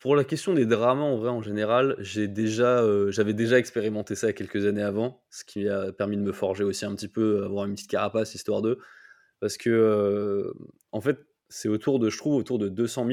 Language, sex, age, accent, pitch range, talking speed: French, male, 20-39, French, 105-130 Hz, 225 wpm